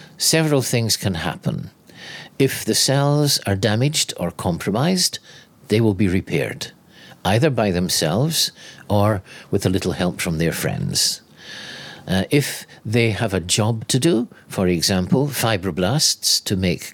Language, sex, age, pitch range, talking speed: English, male, 60-79, 95-135 Hz, 140 wpm